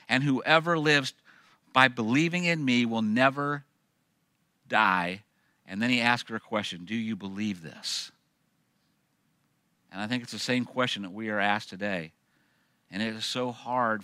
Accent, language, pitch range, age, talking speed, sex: American, English, 100-125 Hz, 50-69, 160 wpm, male